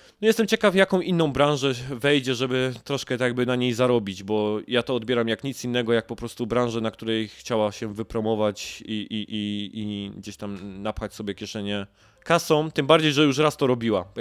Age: 20-39